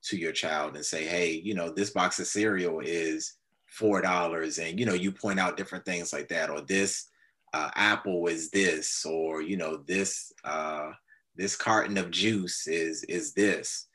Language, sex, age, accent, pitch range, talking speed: English, male, 30-49, American, 85-105 Hz, 185 wpm